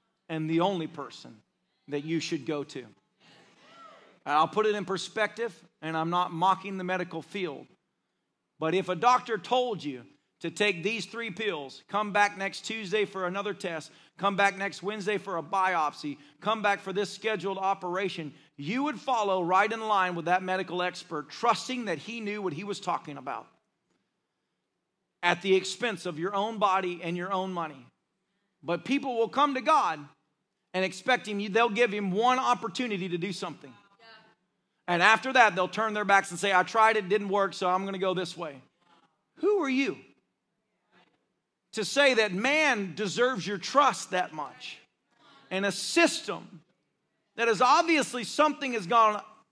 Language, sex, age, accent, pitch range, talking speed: English, male, 40-59, American, 180-225 Hz, 170 wpm